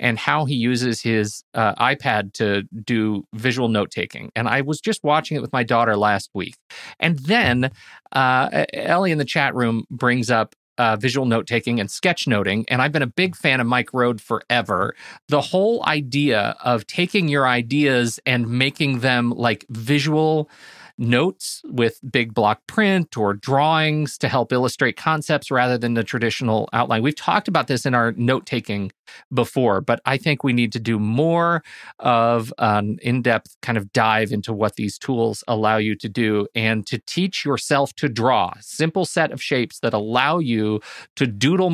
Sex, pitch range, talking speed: male, 110-140 Hz, 175 wpm